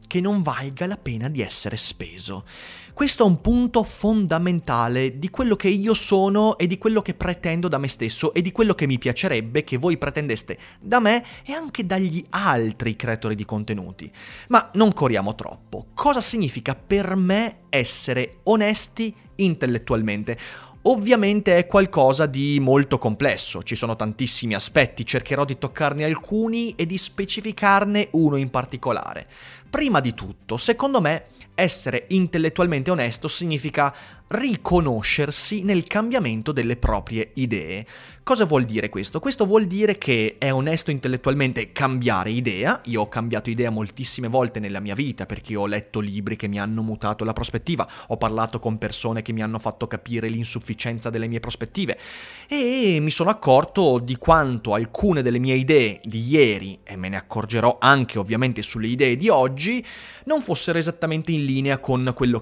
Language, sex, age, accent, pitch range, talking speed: Italian, male, 30-49, native, 115-180 Hz, 160 wpm